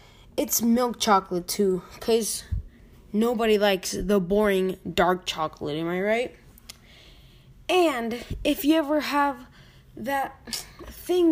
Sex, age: female, 10-29